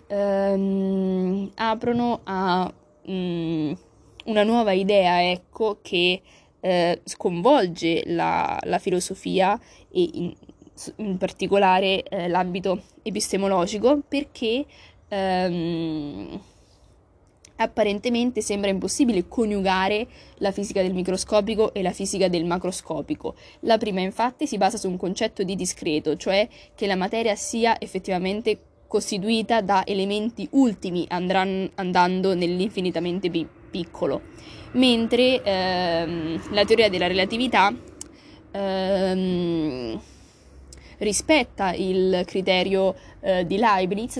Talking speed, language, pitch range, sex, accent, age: 100 wpm, Italian, 180-220 Hz, female, native, 20-39